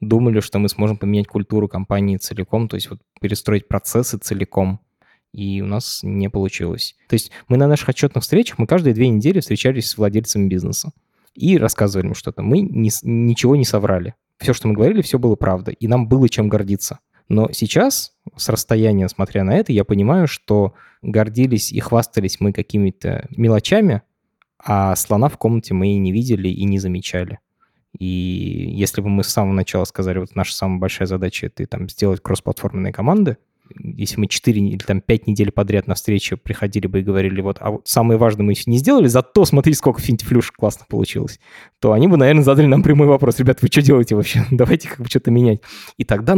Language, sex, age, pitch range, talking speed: Russian, male, 20-39, 100-130 Hz, 190 wpm